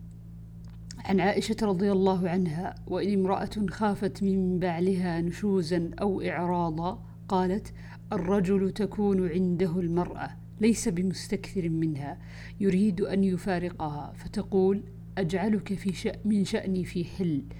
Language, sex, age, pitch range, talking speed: Arabic, female, 50-69, 160-190 Hz, 110 wpm